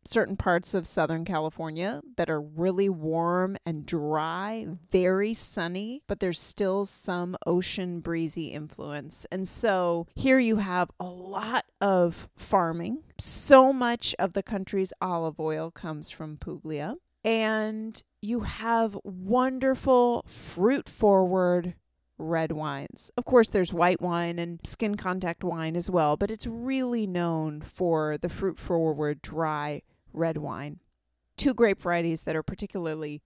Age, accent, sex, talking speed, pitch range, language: 30-49, American, female, 135 wpm, 160-200 Hz, English